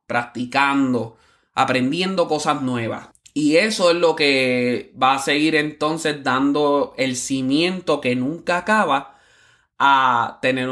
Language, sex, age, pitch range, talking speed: Spanish, male, 20-39, 130-165 Hz, 120 wpm